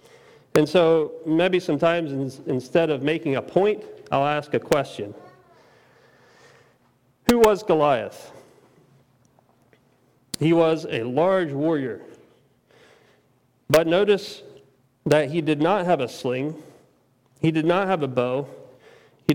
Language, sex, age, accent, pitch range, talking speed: English, male, 40-59, American, 130-170 Hz, 115 wpm